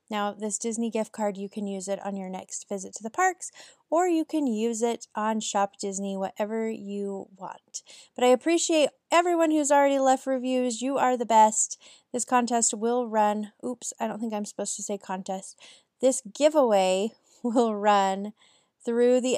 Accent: American